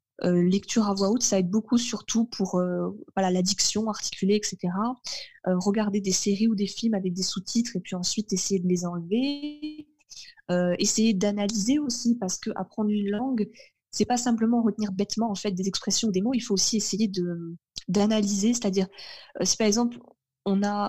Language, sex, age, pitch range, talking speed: French, female, 20-39, 190-230 Hz, 185 wpm